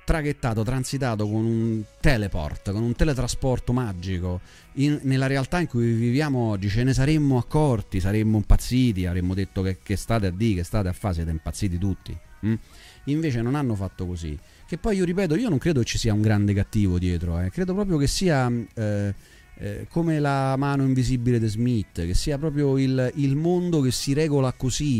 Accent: native